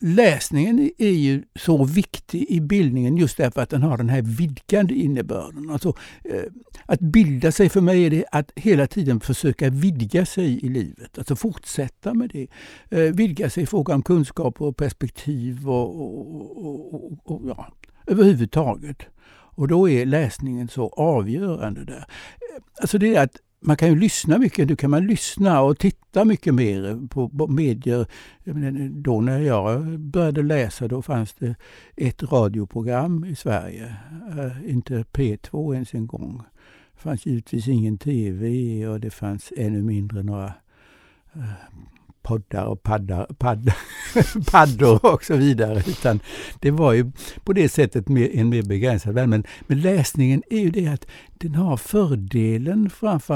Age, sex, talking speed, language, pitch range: 60-79, male, 150 wpm, Swedish, 115-165 Hz